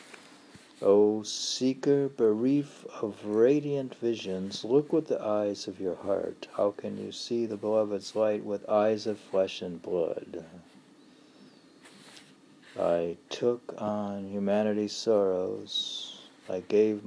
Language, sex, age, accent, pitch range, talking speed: English, male, 60-79, American, 105-150 Hz, 120 wpm